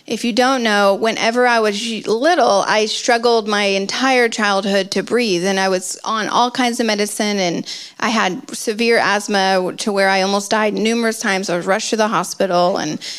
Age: 30-49